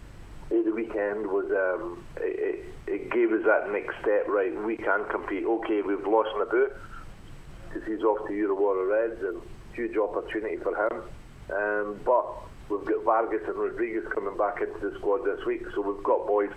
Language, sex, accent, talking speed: English, male, British, 185 wpm